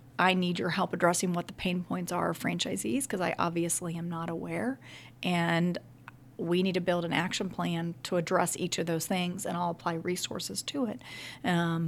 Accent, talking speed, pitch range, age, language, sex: American, 195 wpm, 165-185 Hz, 40-59, English, female